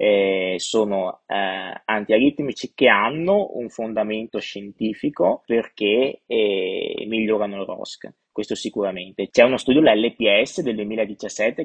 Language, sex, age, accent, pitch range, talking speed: Italian, male, 20-39, native, 105-120 Hz, 115 wpm